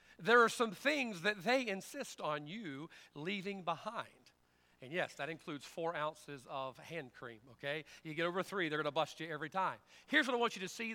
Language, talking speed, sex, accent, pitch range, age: English, 215 wpm, male, American, 165-225 Hz, 40-59